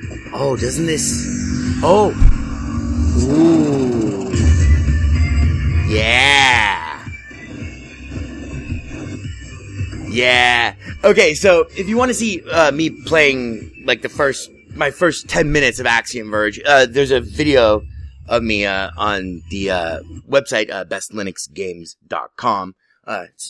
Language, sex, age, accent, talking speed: English, male, 30-49, American, 105 wpm